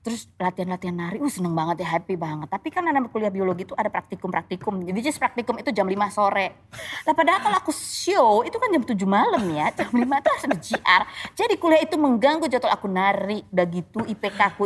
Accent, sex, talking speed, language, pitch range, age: native, female, 195 wpm, Indonesian, 175-240 Hz, 20-39